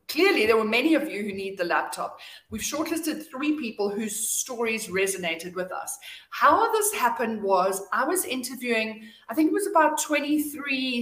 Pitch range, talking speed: 205-285 Hz, 175 wpm